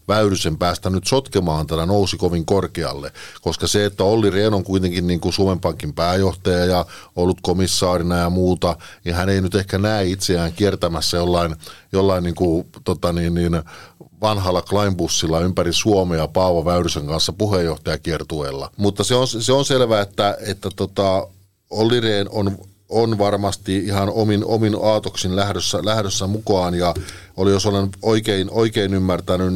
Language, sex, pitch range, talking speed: Finnish, male, 90-100 Hz, 155 wpm